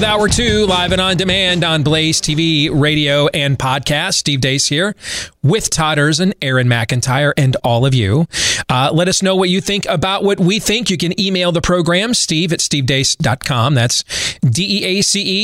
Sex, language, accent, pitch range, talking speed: male, English, American, 135-170 Hz, 175 wpm